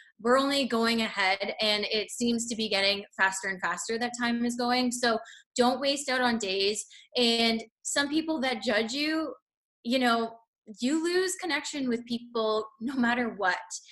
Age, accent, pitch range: 20-39, American, 210-245 Hz